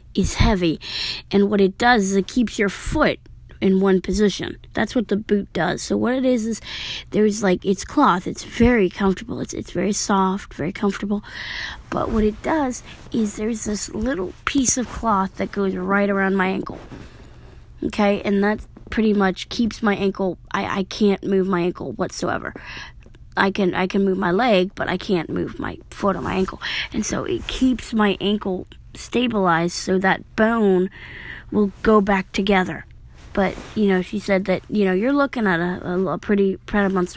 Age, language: 20-39, English